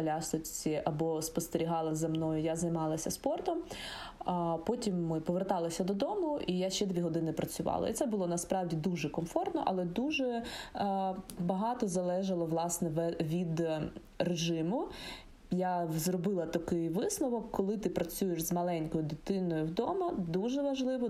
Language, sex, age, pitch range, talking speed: Ukrainian, female, 20-39, 165-215 Hz, 125 wpm